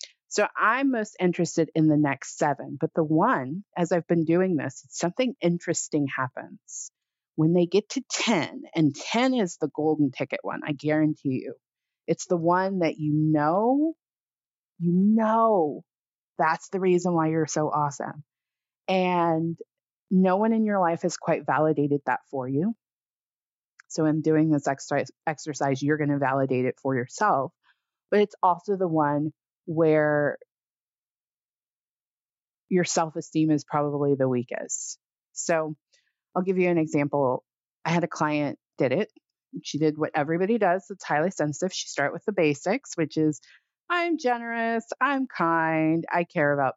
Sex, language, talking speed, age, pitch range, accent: female, English, 155 wpm, 30-49, 150-185 Hz, American